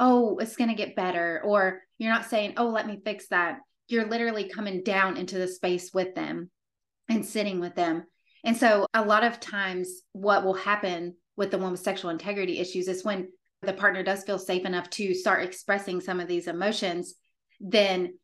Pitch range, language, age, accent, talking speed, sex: 180-215 Hz, English, 30-49, American, 195 wpm, female